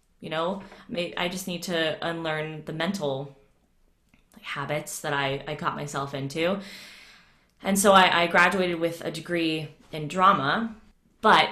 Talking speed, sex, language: 140 wpm, female, English